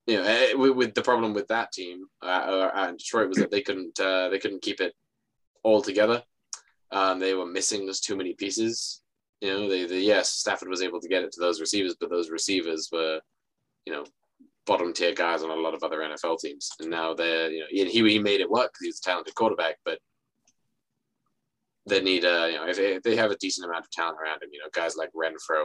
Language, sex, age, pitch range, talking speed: English, male, 20-39, 90-110 Hz, 230 wpm